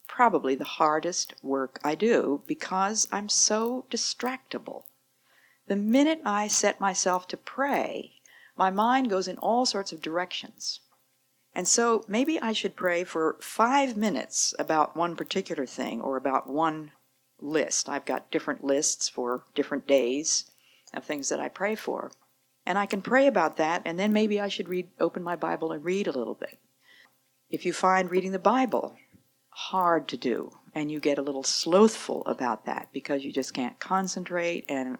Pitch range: 135-200 Hz